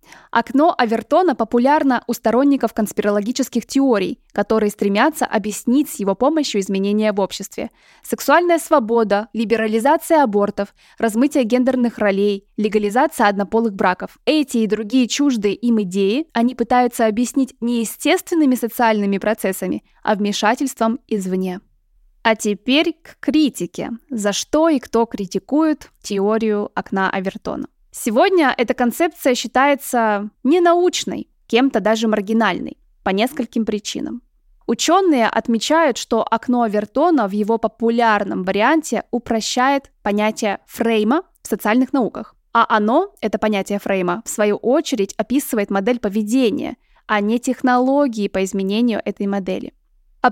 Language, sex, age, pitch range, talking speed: Russian, female, 20-39, 210-265 Hz, 120 wpm